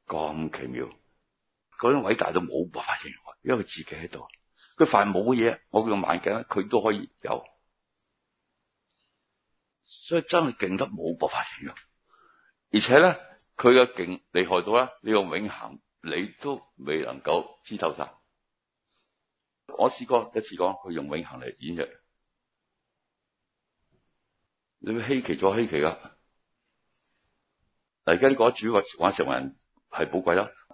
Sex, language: male, Chinese